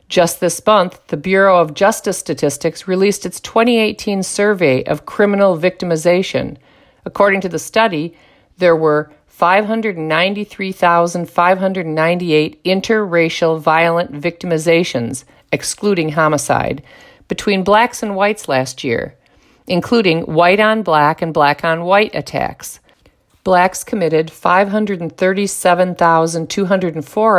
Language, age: English, 50-69